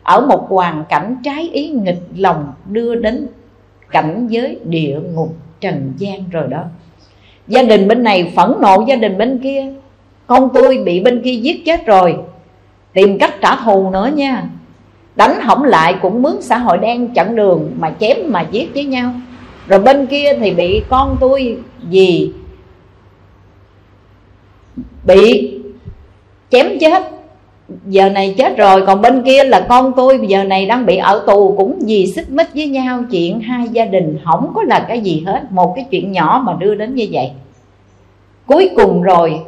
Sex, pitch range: female, 170-250 Hz